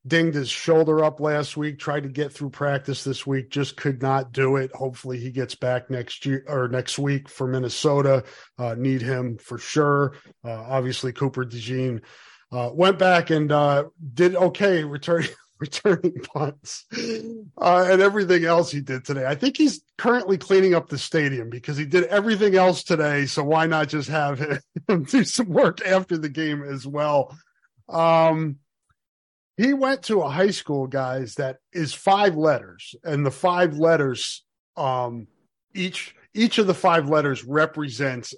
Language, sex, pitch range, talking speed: English, male, 135-175 Hz, 165 wpm